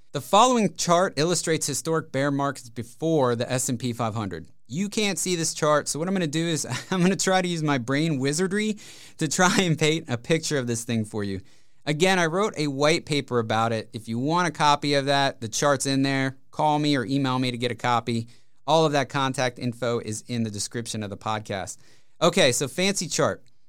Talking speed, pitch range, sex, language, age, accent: 220 wpm, 125-160 Hz, male, English, 30-49, American